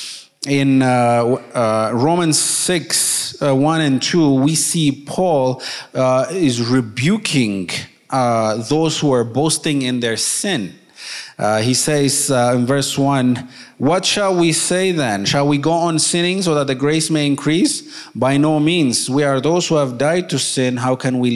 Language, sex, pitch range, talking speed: English, male, 120-145 Hz, 170 wpm